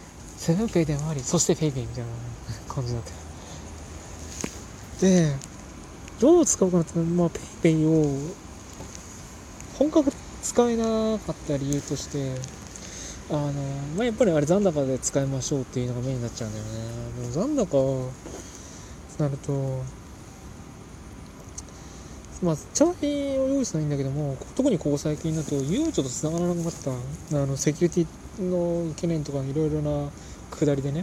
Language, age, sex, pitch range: Japanese, 20-39, male, 115-160 Hz